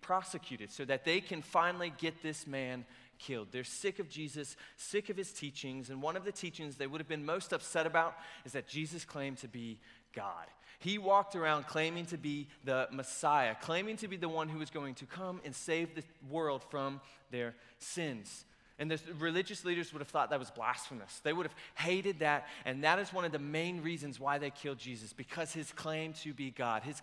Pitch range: 135-175 Hz